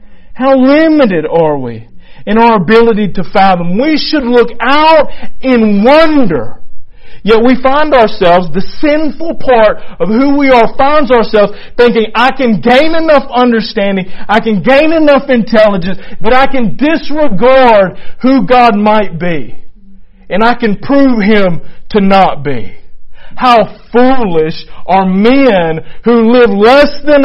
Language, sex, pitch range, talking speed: English, male, 180-250 Hz, 140 wpm